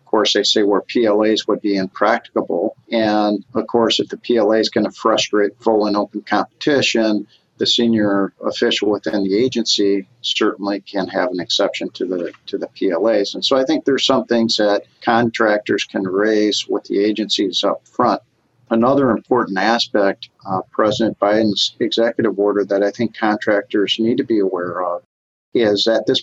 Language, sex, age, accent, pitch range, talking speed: English, male, 50-69, American, 100-115 Hz, 170 wpm